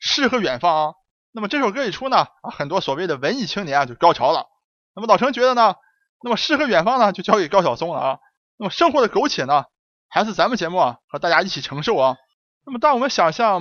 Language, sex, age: Chinese, male, 20-39